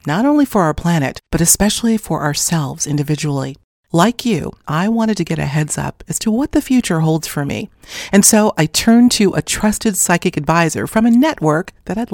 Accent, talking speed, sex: American, 205 wpm, female